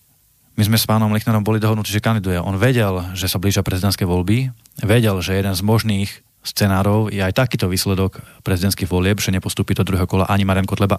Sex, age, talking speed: male, 20-39, 195 wpm